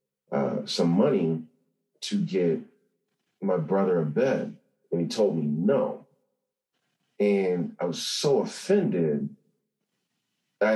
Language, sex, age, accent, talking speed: English, male, 40-59, American, 110 wpm